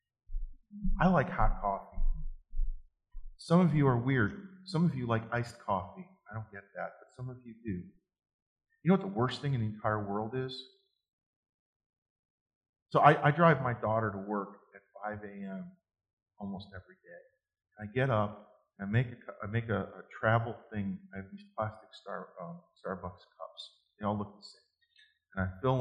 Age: 40-59